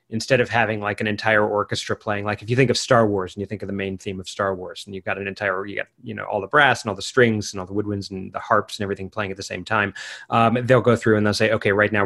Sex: male